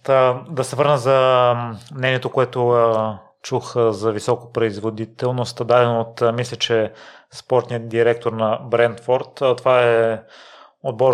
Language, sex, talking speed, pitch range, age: Bulgarian, male, 110 wpm, 110-120 Hz, 30-49